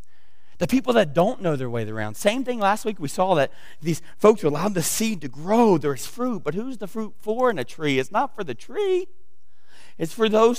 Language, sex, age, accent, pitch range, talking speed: English, male, 40-59, American, 160-235 Hz, 230 wpm